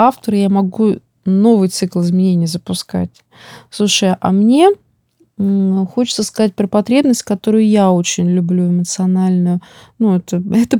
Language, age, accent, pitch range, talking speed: Russian, 30-49, native, 190-230 Hz, 120 wpm